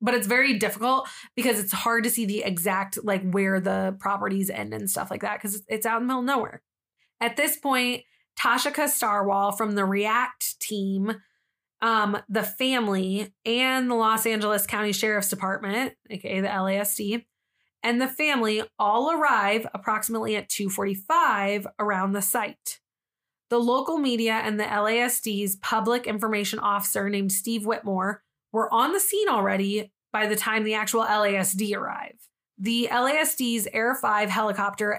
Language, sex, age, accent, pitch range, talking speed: English, female, 20-39, American, 205-245 Hz, 155 wpm